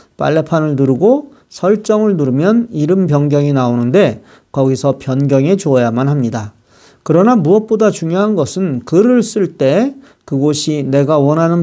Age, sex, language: 40-59, male, Korean